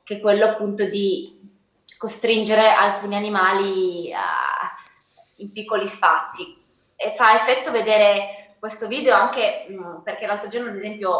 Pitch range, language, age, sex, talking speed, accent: 200-230 Hz, Italian, 20-39, female, 130 wpm, native